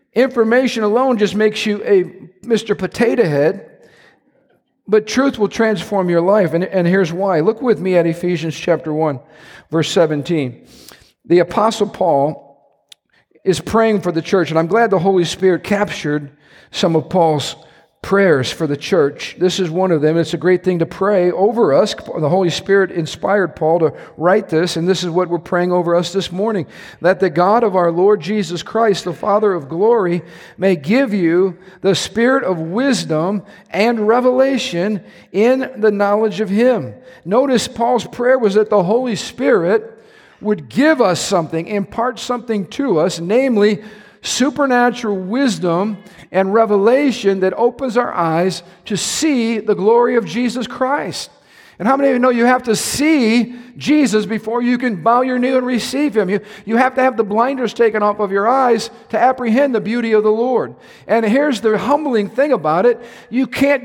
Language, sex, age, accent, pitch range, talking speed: English, male, 50-69, American, 180-240 Hz, 175 wpm